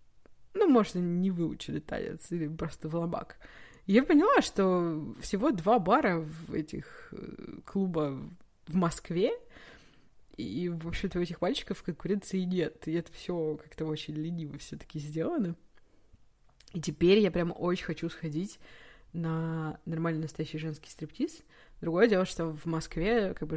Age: 20-39